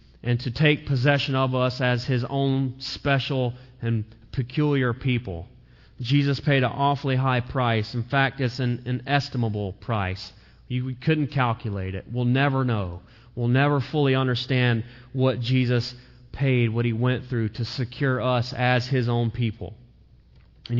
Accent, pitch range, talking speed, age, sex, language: American, 120-140 Hz, 155 wpm, 30-49, male, English